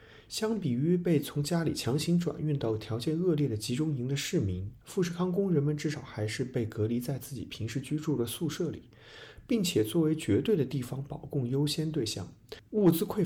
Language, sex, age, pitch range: Chinese, male, 30-49, 110-165 Hz